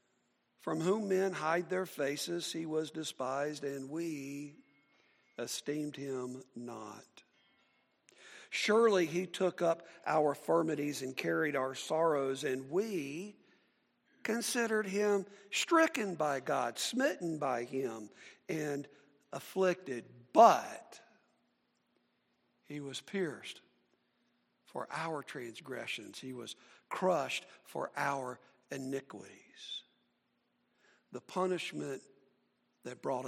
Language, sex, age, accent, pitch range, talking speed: English, male, 60-79, American, 135-185 Hz, 95 wpm